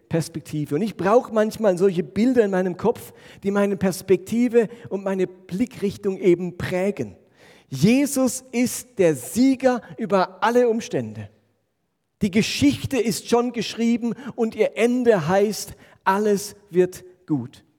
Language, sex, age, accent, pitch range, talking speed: German, male, 40-59, German, 150-215 Hz, 120 wpm